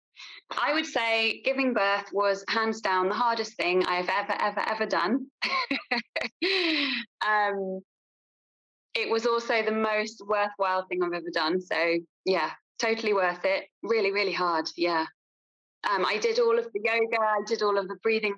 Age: 20-39